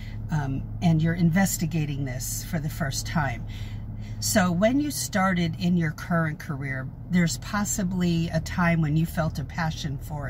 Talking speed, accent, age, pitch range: 155 wpm, American, 50-69, 115-170 Hz